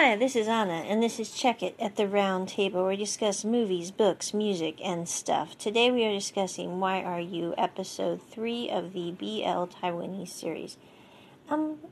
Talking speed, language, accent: 180 wpm, English, American